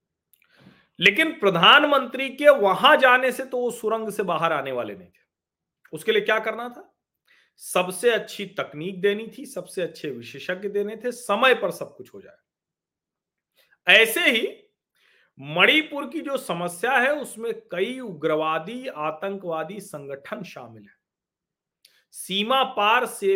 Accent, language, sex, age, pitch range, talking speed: native, Hindi, male, 40-59, 180-250 Hz, 135 wpm